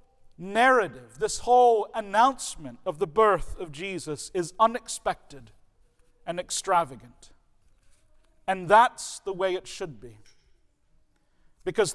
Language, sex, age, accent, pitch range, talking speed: English, male, 50-69, American, 155-225 Hz, 105 wpm